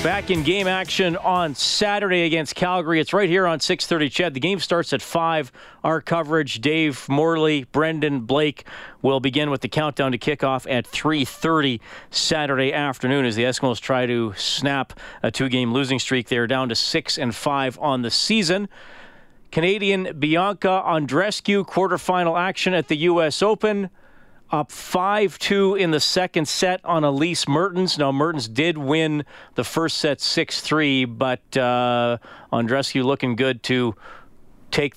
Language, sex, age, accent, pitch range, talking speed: English, male, 40-59, American, 125-165 Hz, 155 wpm